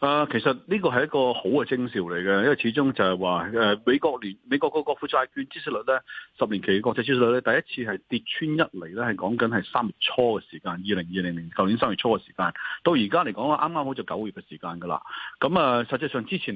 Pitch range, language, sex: 100-140 Hz, Chinese, male